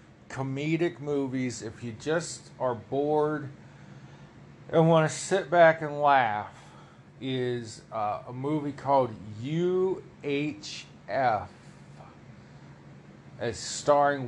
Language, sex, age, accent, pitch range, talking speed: English, male, 40-59, American, 125-165 Hz, 90 wpm